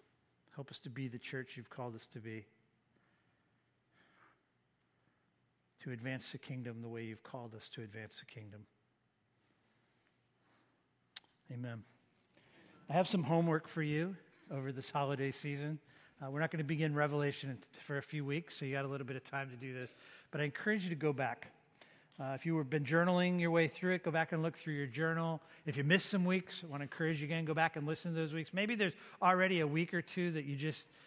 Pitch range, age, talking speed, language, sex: 140-170 Hz, 50-69, 210 wpm, English, male